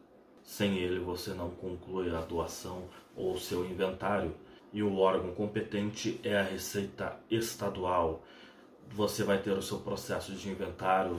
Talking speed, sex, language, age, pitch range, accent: 145 wpm, male, Portuguese, 30-49, 95-110 Hz, Brazilian